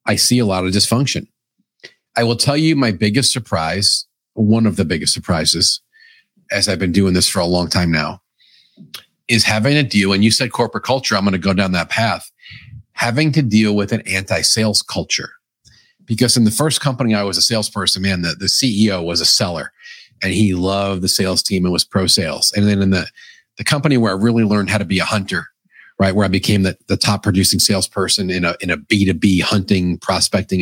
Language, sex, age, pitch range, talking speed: English, male, 40-59, 95-115 Hz, 210 wpm